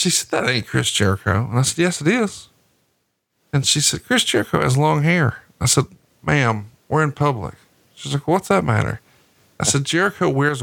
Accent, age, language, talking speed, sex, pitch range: American, 40-59, English, 200 wpm, male, 115-150 Hz